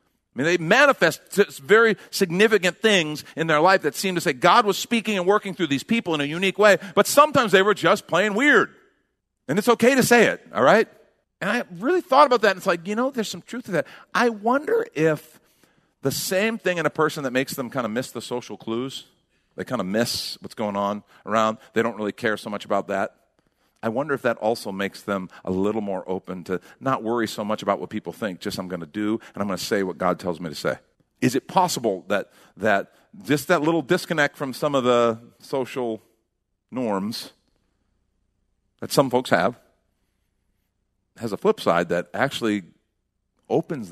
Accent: American